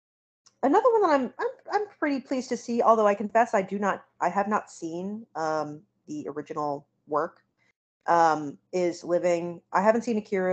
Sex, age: female, 30-49